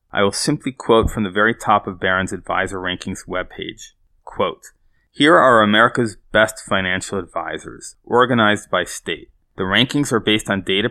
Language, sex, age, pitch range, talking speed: English, male, 30-49, 100-120 Hz, 155 wpm